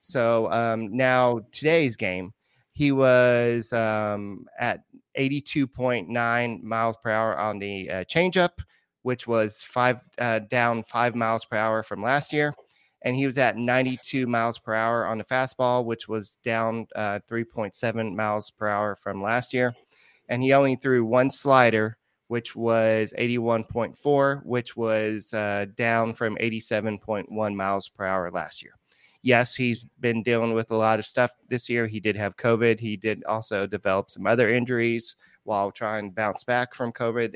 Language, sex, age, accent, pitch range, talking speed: English, male, 30-49, American, 110-125 Hz, 160 wpm